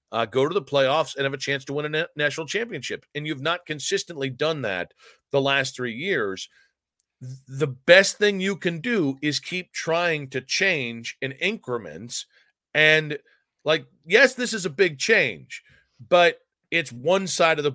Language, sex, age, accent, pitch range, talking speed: English, male, 40-59, American, 130-165 Hz, 170 wpm